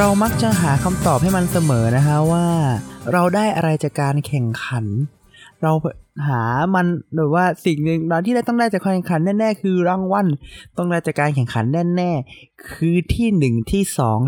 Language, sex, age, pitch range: Thai, male, 20-39, 115-155 Hz